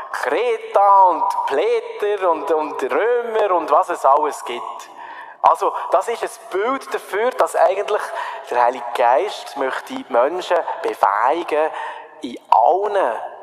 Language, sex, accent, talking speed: German, male, Austrian, 125 wpm